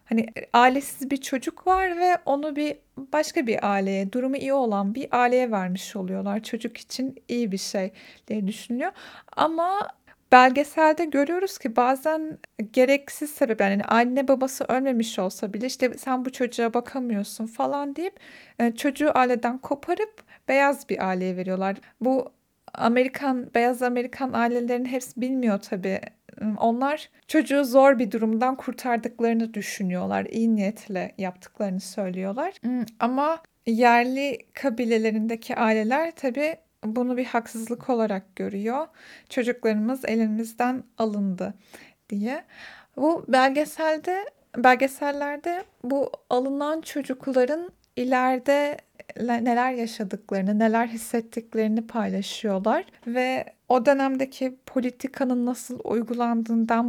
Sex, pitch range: female, 225-280 Hz